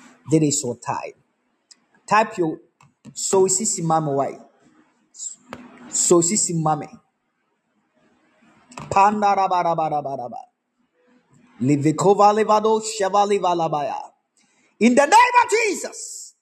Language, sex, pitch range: Japanese, male, 155-235 Hz